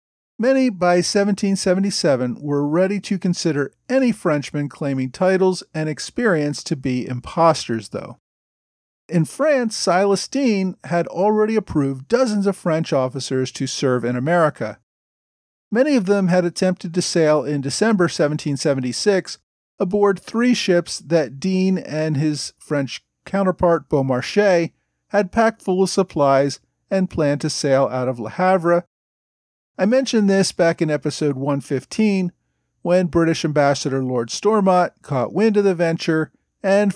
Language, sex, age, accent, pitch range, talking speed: English, male, 40-59, American, 145-195 Hz, 135 wpm